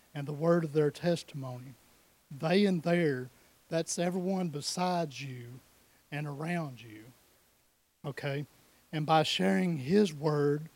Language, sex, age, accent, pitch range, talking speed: English, male, 40-59, American, 145-170 Hz, 125 wpm